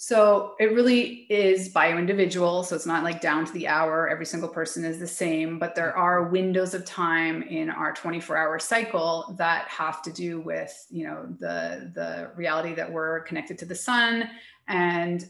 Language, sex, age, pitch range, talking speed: English, female, 30-49, 165-185 Hz, 185 wpm